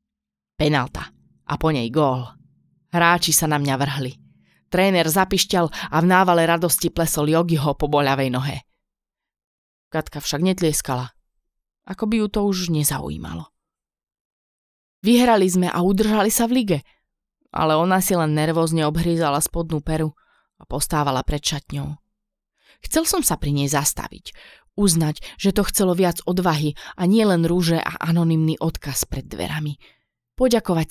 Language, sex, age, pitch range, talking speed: Slovak, female, 20-39, 140-180 Hz, 135 wpm